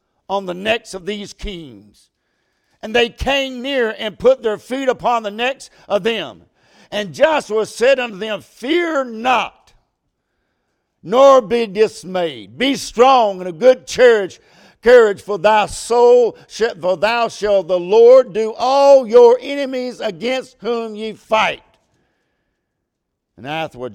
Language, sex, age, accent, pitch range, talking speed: English, male, 60-79, American, 160-220 Hz, 135 wpm